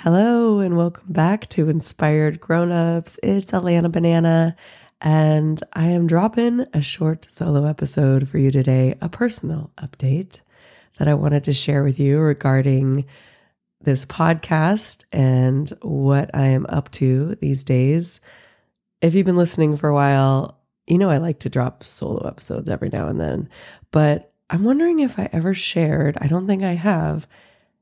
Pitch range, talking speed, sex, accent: 135-170 Hz, 160 wpm, female, American